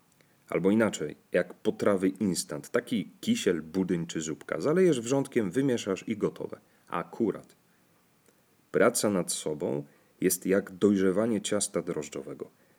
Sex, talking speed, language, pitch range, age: male, 115 wpm, Polish, 90-110 Hz, 40-59